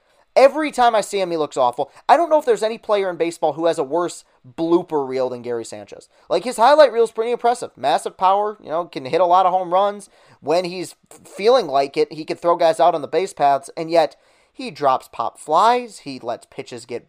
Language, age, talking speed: English, 30-49, 240 wpm